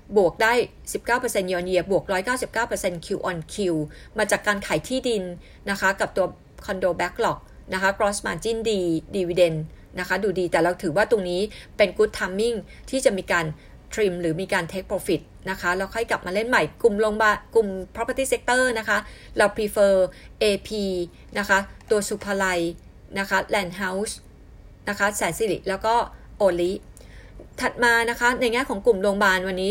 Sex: female